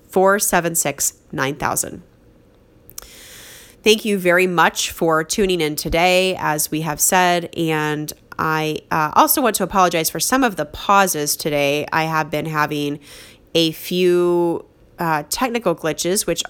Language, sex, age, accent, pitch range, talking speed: English, female, 30-49, American, 155-200 Hz, 130 wpm